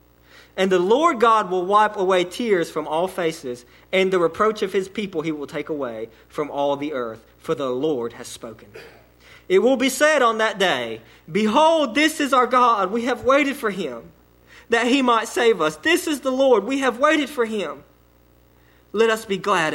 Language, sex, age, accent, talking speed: English, male, 40-59, American, 200 wpm